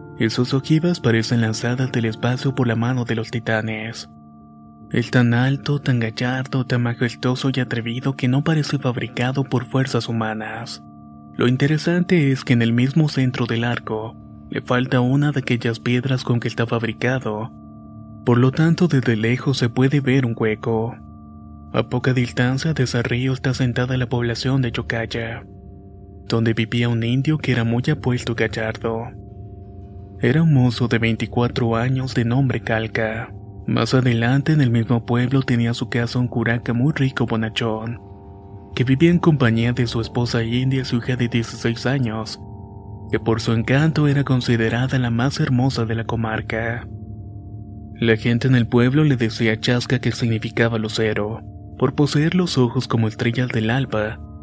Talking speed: 160 wpm